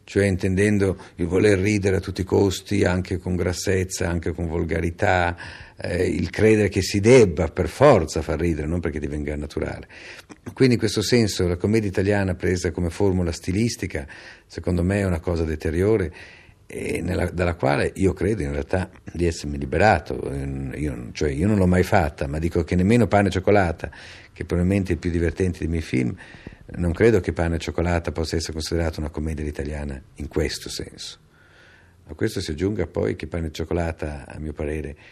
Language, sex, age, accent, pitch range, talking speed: Italian, male, 50-69, native, 80-95 Hz, 185 wpm